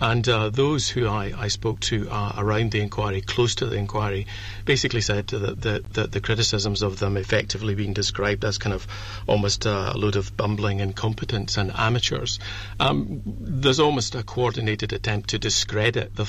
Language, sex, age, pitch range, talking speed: English, male, 50-69, 105-120 Hz, 175 wpm